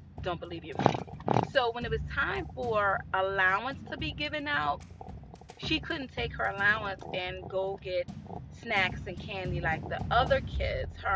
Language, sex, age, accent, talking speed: English, female, 30-49, American, 160 wpm